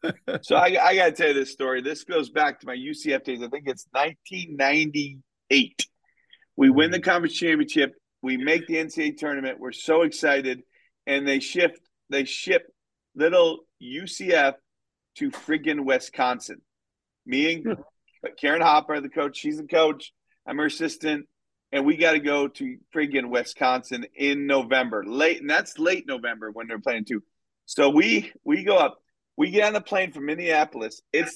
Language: English